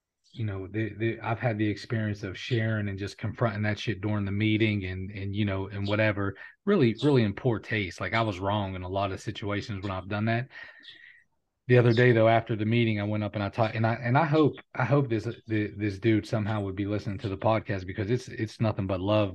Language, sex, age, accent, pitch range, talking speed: English, male, 30-49, American, 100-120 Hz, 245 wpm